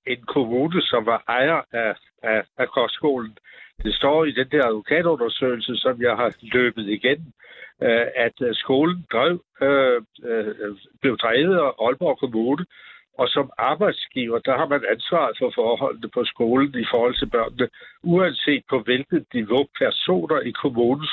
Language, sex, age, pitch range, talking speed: Danish, male, 60-79, 120-160 Hz, 140 wpm